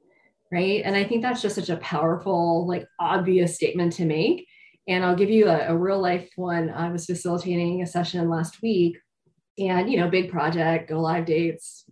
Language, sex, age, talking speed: English, female, 20-39, 190 wpm